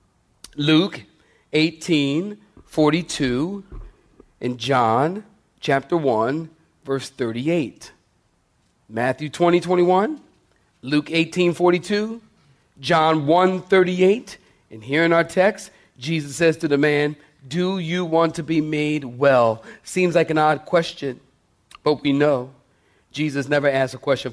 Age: 40-59